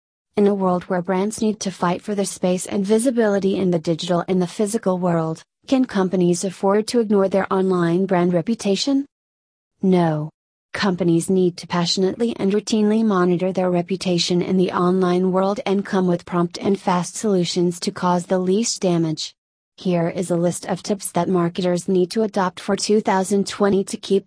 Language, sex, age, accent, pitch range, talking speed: English, female, 30-49, American, 175-200 Hz, 175 wpm